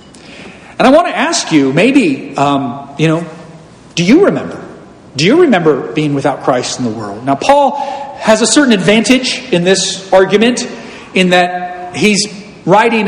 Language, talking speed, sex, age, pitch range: English, 160 wpm, male, 40-59, 170-245 Hz